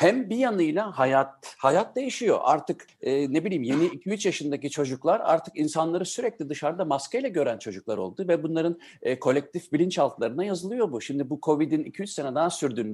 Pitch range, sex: 135-180 Hz, male